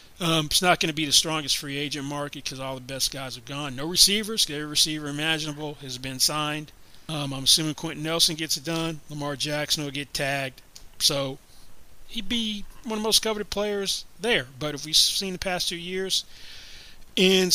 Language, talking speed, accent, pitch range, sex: English, 200 wpm, American, 140-175 Hz, male